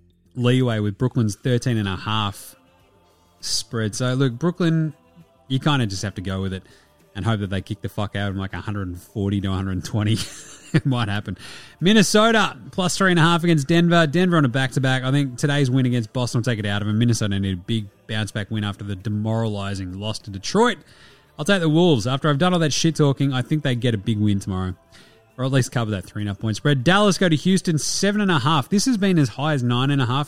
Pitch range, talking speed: 105-150 Hz, 240 wpm